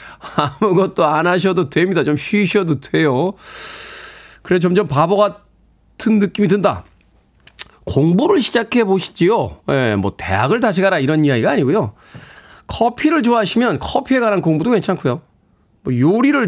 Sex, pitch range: male, 145-210 Hz